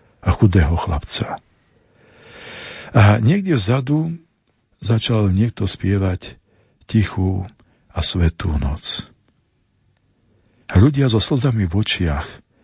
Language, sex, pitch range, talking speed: Slovak, male, 90-120 Hz, 90 wpm